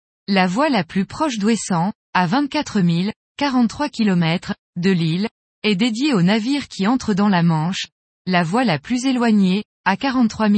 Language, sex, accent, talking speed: French, female, French, 165 wpm